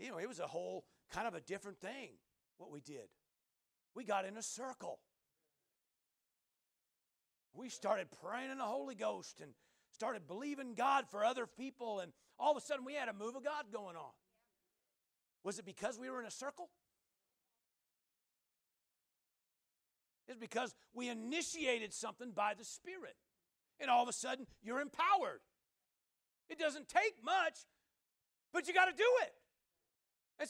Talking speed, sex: 155 wpm, male